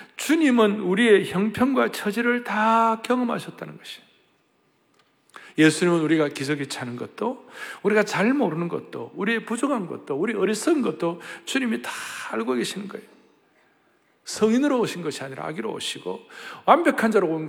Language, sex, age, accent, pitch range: Korean, male, 60-79, native, 170-265 Hz